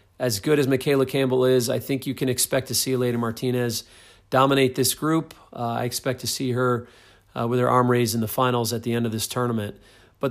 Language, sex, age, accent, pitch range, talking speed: English, male, 40-59, American, 120-135 Hz, 225 wpm